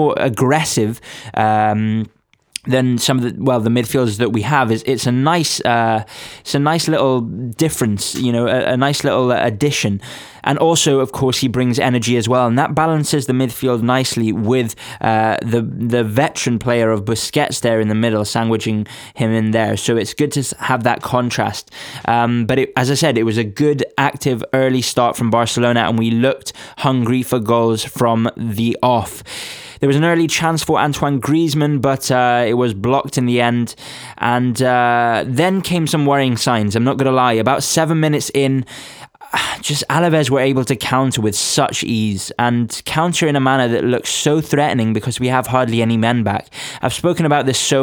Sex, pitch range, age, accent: male, 115-140 Hz, 20-39, British